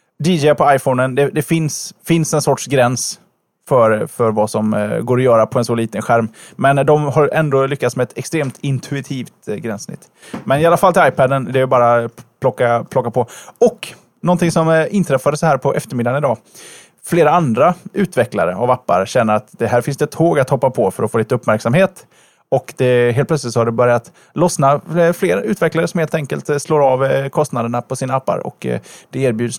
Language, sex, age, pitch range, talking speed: Swedish, male, 20-39, 120-155 Hz, 195 wpm